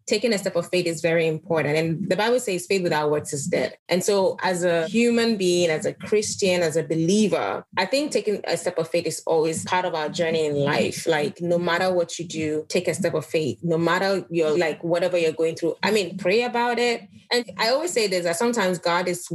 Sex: female